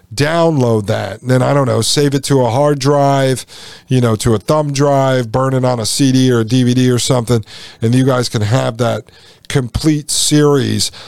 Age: 40-59